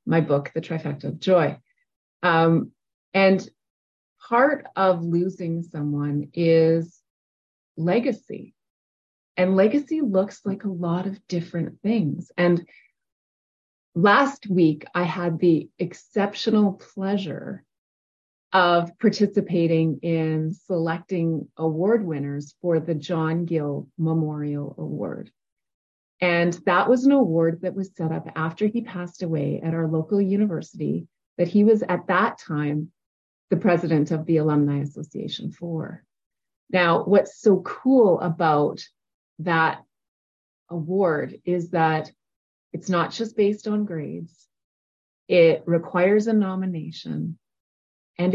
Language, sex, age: English, female, 30-49